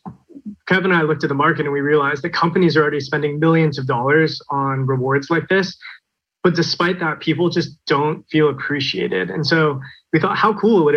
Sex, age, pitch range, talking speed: male, 20-39, 140-165 Hz, 200 wpm